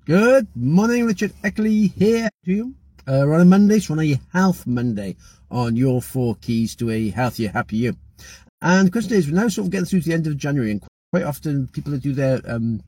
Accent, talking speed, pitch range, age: British, 235 wpm, 130-195 Hz, 50-69